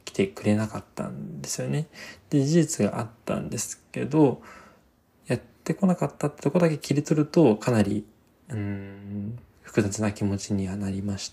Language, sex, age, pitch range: Japanese, male, 20-39, 100-130 Hz